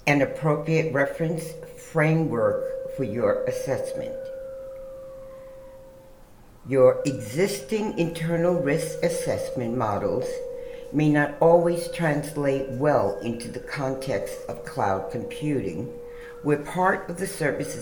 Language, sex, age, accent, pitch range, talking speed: English, female, 60-79, American, 125-195 Hz, 95 wpm